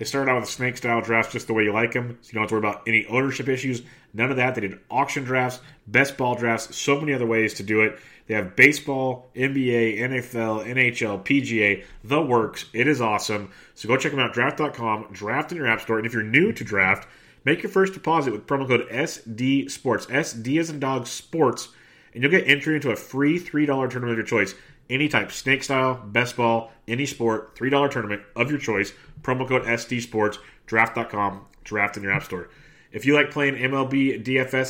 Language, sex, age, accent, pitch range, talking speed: English, male, 30-49, American, 110-130 Hz, 210 wpm